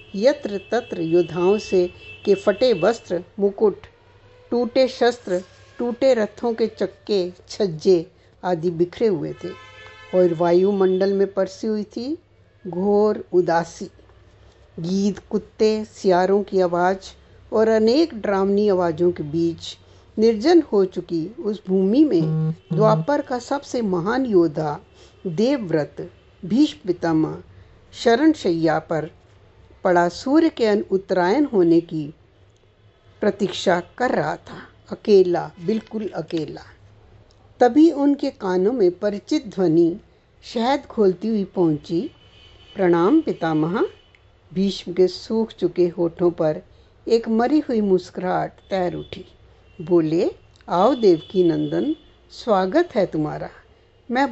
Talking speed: 105 wpm